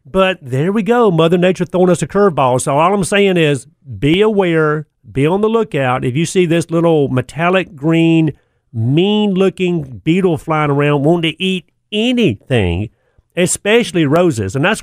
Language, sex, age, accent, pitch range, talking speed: English, male, 40-59, American, 115-160 Hz, 165 wpm